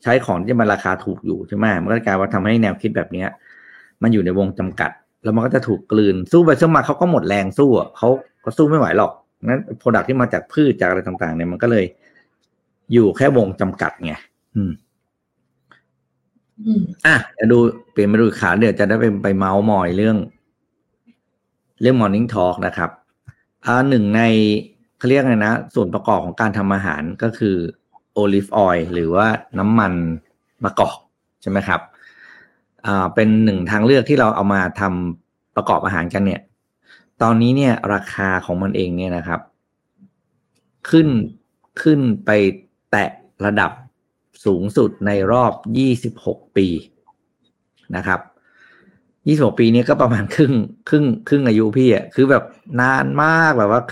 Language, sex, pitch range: Thai, male, 95-125 Hz